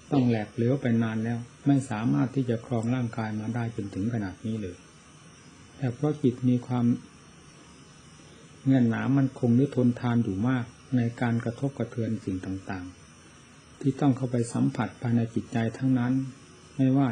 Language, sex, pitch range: Thai, male, 115-130 Hz